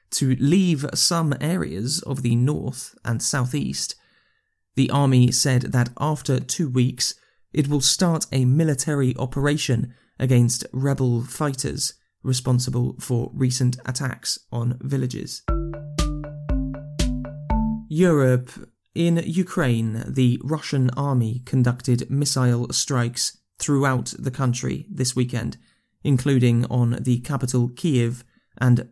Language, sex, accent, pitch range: English, male, British, 125-145 Hz